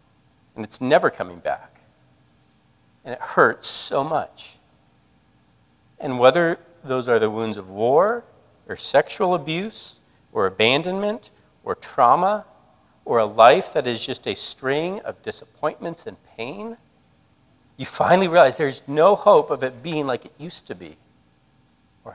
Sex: male